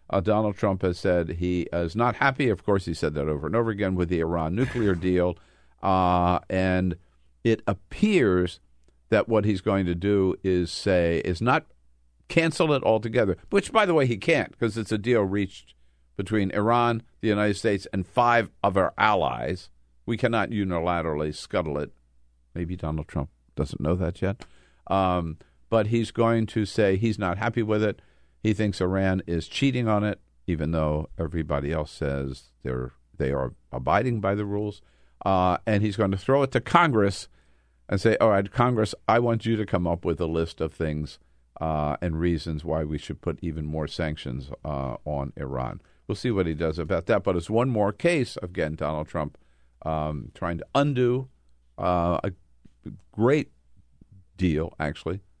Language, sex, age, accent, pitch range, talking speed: English, male, 50-69, American, 75-105 Hz, 180 wpm